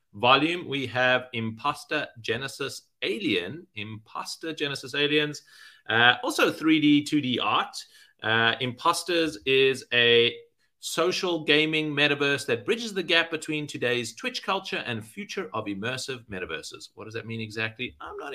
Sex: male